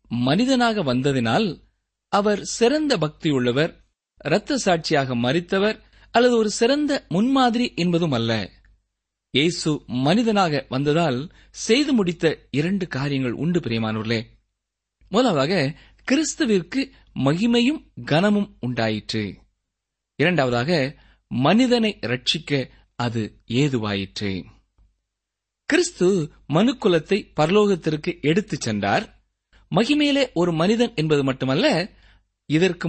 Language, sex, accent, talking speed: Tamil, male, native, 80 wpm